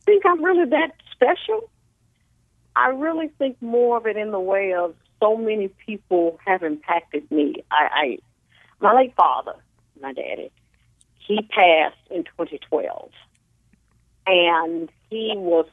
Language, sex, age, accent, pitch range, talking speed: English, female, 50-69, American, 145-195 Hz, 135 wpm